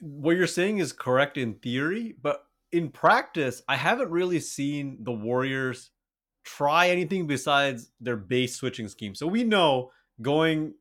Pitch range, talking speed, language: 125-170 Hz, 150 wpm, English